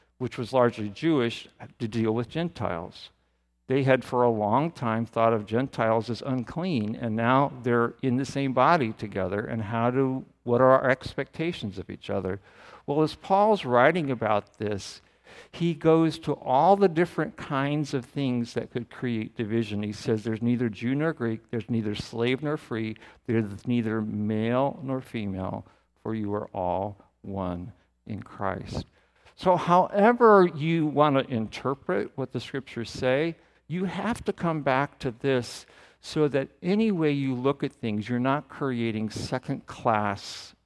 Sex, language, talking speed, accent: male, English, 160 wpm, American